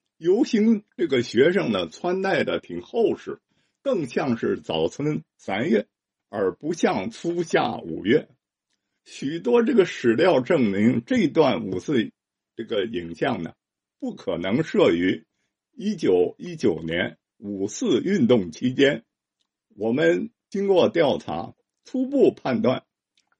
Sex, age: male, 50-69